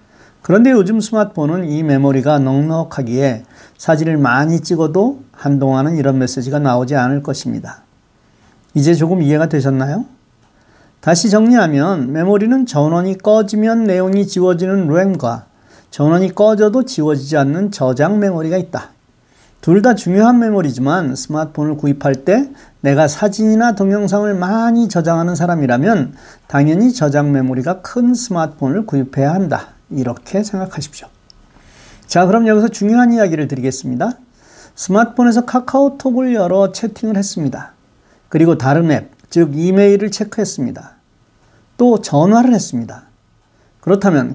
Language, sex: Korean, male